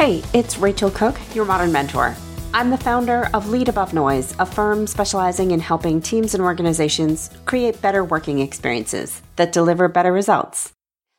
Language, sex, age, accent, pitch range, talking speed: English, female, 40-59, American, 155-215 Hz, 160 wpm